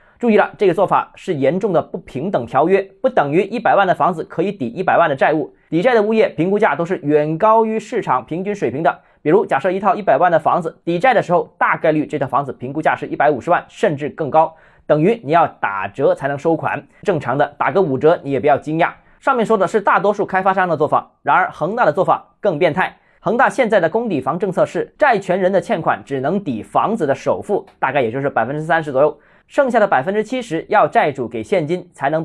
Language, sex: Chinese, male